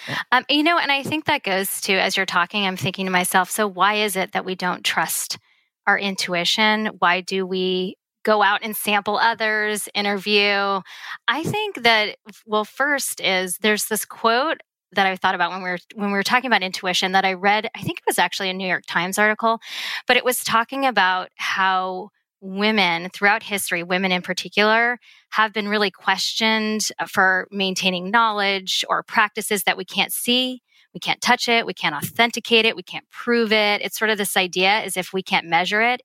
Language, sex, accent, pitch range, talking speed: English, female, American, 185-220 Hz, 195 wpm